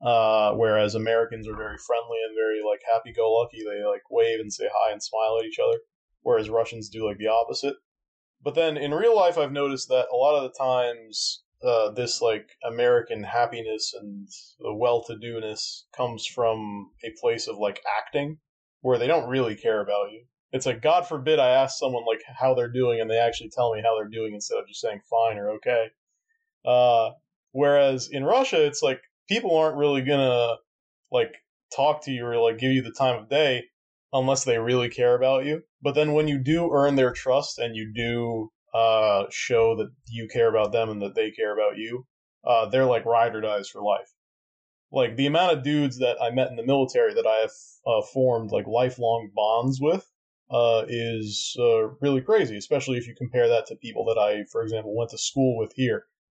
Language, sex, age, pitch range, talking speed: English, male, 20-39, 115-150 Hz, 200 wpm